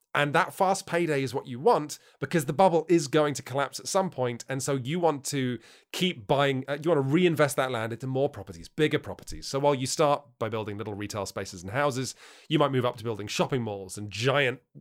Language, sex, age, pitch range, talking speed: English, male, 30-49, 115-160 Hz, 230 wpm